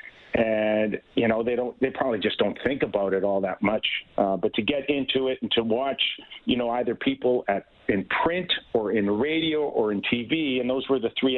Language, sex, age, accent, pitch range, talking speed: English, male, 50-69, American, 115-135 Hz, 220 wpm